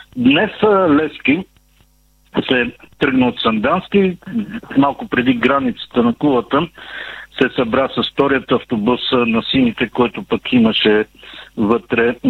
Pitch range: 115-150 Hz